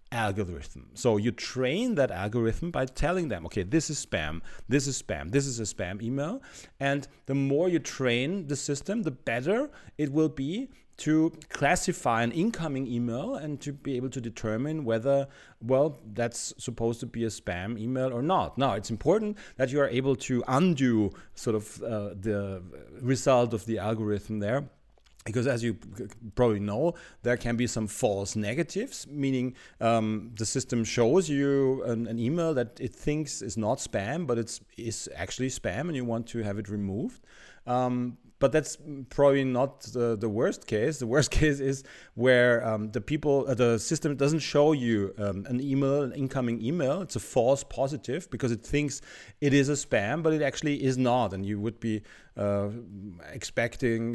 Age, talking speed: 40-59, 180 wpm